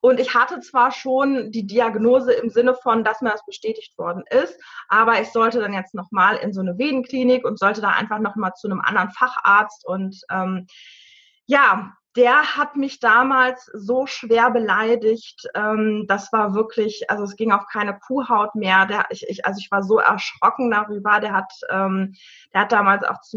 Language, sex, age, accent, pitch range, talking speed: German, female, 20-39, German, 210-250 Hz, 180 wpm